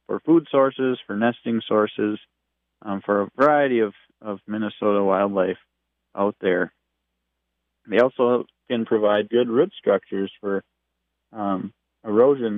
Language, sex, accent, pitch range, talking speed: English, male, American, 85-115 Hz, 125 wpm